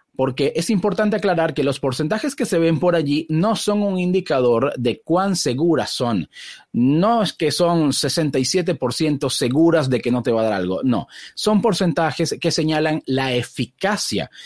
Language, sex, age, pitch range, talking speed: Spanish, male, 30-49, 115-170 Hz, 170 wpm